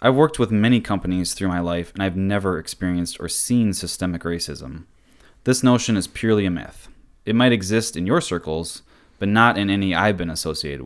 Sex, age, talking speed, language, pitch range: male, 20-39, 195 wpm, English, 90-110 Hz